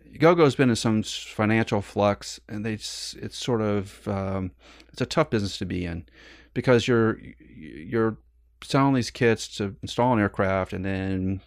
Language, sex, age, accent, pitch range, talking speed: English, male, 30-49, American, 95-115 Hz, 160 wpm